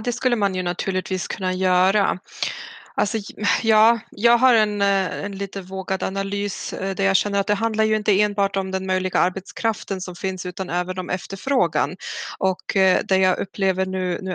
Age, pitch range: 20-39, 185-215 Hz